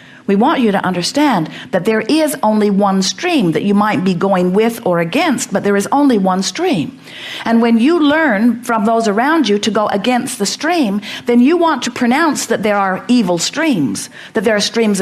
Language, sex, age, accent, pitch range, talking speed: English, female, 50-69, American, 180-240 Hz, 210 wpm